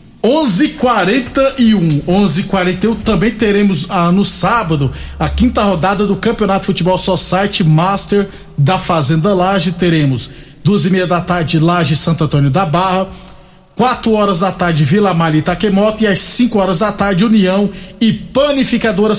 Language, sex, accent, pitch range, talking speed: Portuguese, male, Brazilian, 175-205 Hz, 140 wpm